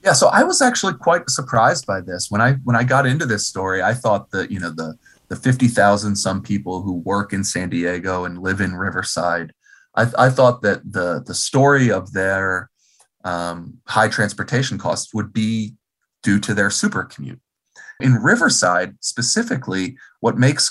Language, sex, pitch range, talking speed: English, male, 95-125 Hz, 180 wpm